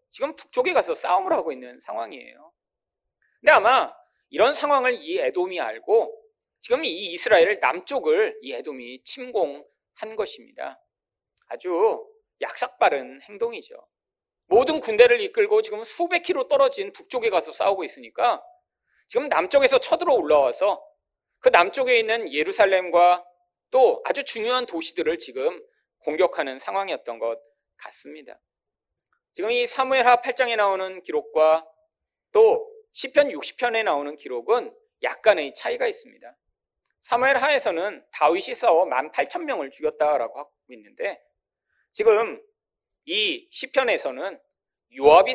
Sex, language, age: male, Korean, 40-59